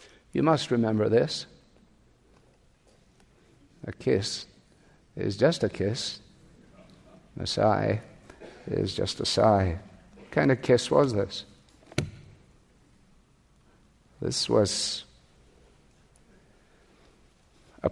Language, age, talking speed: English, 60-79, 85 wpm